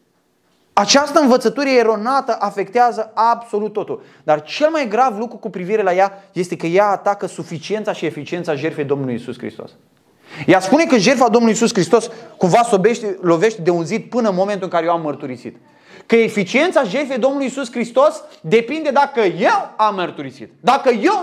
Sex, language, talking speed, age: male, Romanian, 165 wpm, 20-39